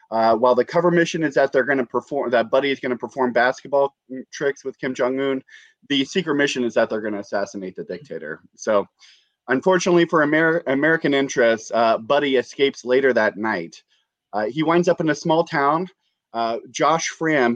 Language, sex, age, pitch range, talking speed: English, male, 30-49, 120-150 Hz, 190 wpm